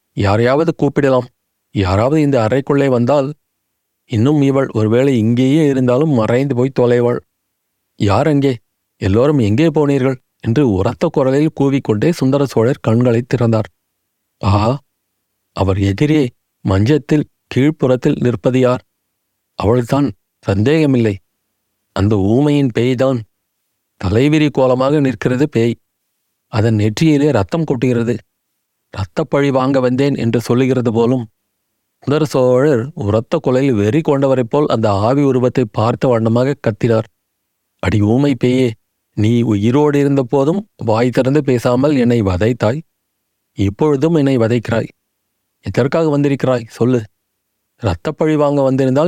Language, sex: Tamil, male